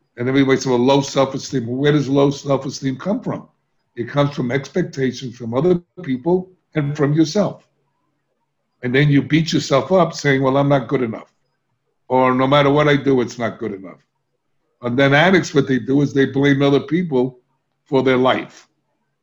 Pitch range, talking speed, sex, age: 125-150 Hz, 185 wpm, male, 60-79